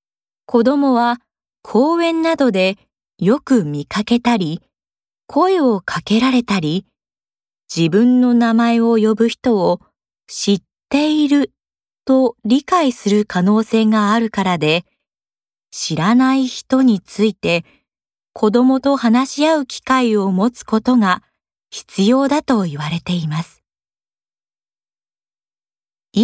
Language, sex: Japanese, female